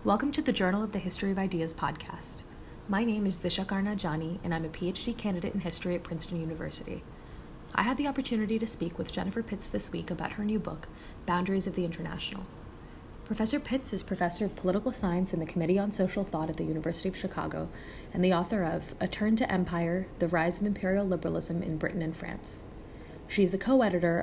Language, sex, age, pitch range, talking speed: English, female, 20-39, 170-205 Hz, 205 wpm